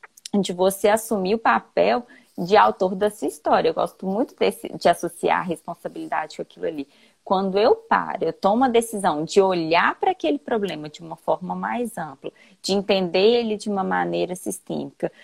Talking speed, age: 175 wpm, 20-39